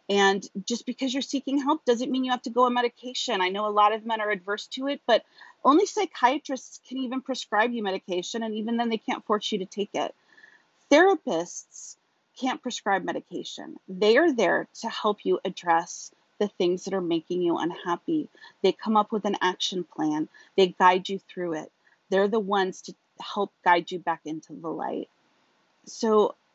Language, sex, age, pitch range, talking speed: English, female, 30-49, 185-245 Hz, 190 wpm